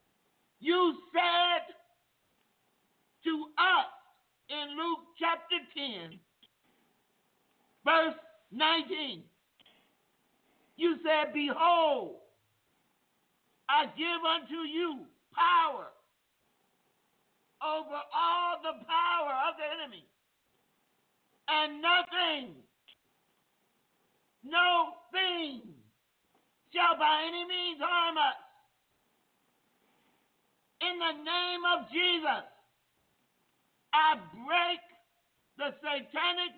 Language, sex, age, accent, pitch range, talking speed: English, male, 50-69, American, 305-345 Hz, 70 wpm